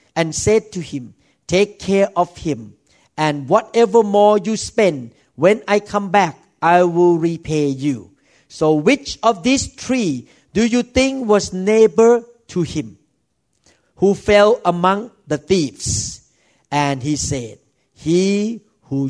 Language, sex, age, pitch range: Thai, male, 50-69, 150-220 Hz